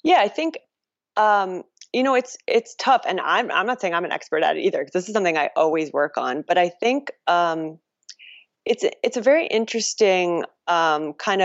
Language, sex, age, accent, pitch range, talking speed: English, female, 20-39, American, 150-190 Hz, 205 wpm